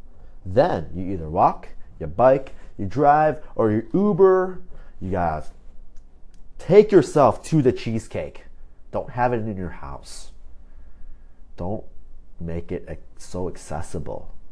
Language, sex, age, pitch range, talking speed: English, male, 30-49, 70-110 Hz, 120 wpm